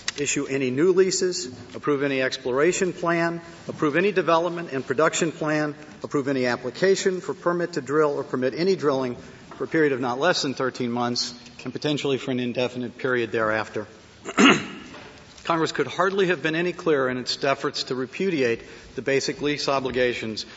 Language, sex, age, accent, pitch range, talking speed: English, male, 50-69, American, 125-160 Hz, 165 wpm